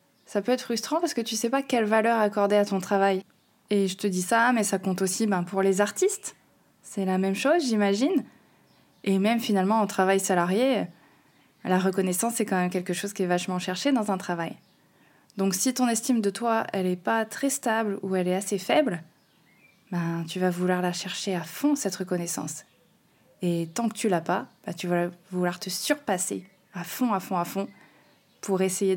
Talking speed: 205 wpm